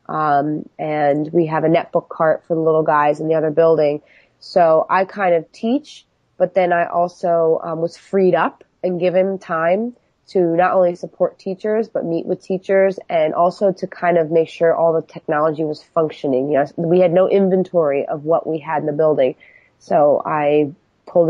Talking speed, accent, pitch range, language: 190 wpm, American, 155-180 Hz, English